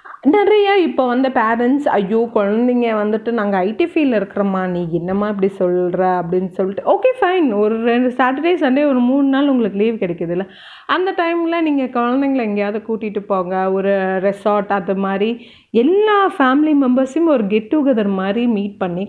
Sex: female